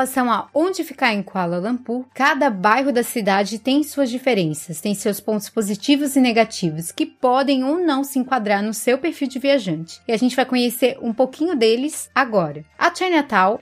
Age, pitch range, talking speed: 20-39, 225-280 Hz, 190 wpm